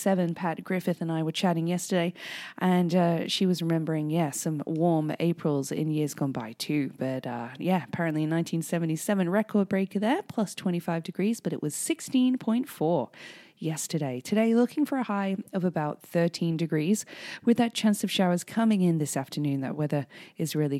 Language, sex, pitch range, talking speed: English, female, 150-195 Hz, 175 wpm